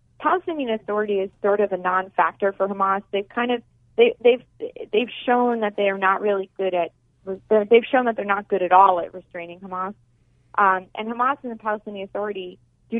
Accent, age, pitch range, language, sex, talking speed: American, 30-49, 185-230 Hz, English, female, 190 wpm